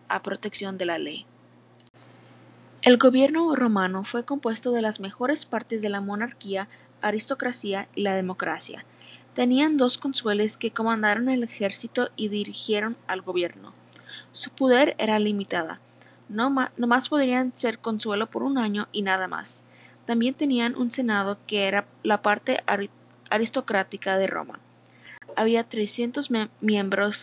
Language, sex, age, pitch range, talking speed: Spanish, female, 20-39, 200-245 Hz, 140 wpm